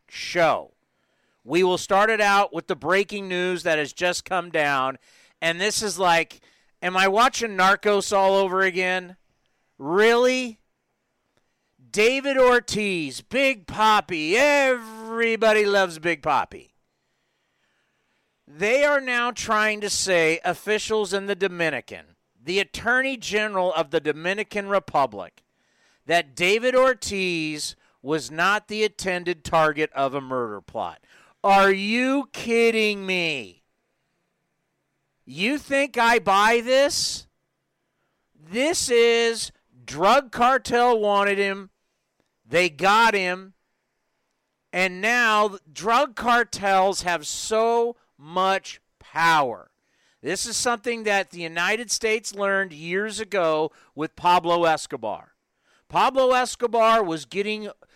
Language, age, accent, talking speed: English, 50-69, American, 110 wpm